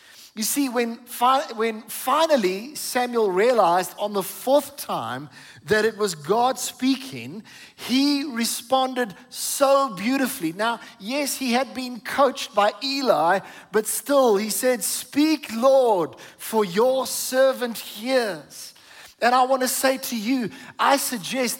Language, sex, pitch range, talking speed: English, male, 215-265 Hz, 130 wpm